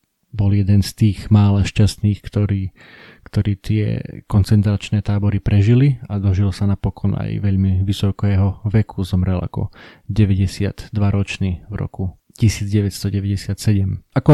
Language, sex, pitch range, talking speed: Slovak, male, 100-110 Hz, 105 wpm